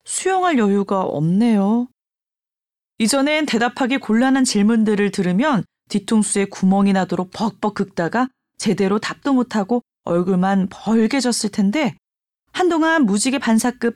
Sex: female